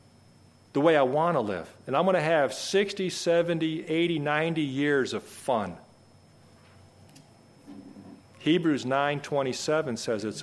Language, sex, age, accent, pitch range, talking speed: English, male, 50-69, American, 115-160 Hz, 130 wpm